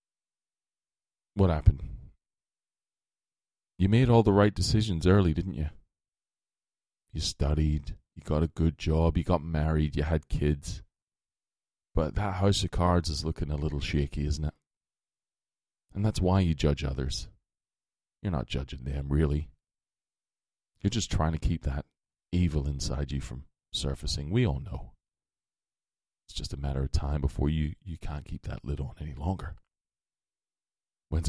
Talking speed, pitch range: 150 wpm, 75-90 Hz